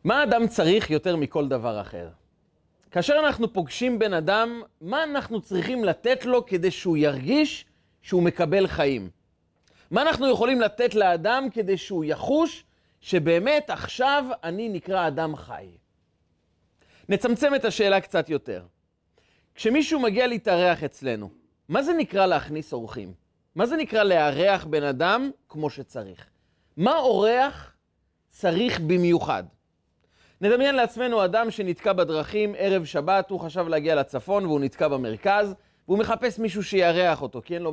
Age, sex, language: 30-49, male, Hebrew